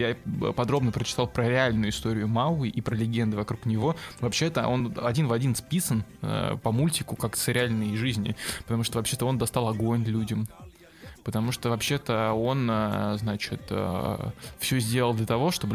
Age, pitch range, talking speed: 20-39, 110-125 Hz, 155 wpm